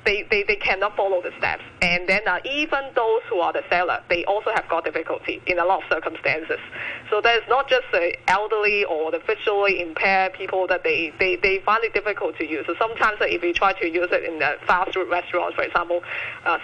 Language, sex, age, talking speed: English, female, 20-39, 230 wpm